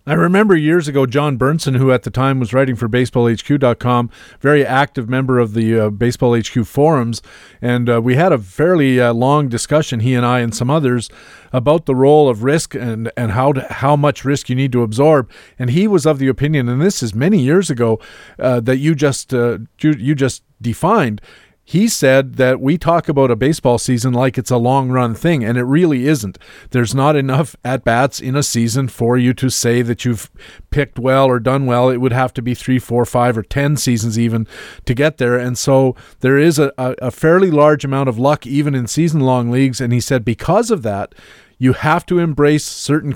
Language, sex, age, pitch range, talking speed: English, male, 40-59, 120-145 Hz, 210 wpm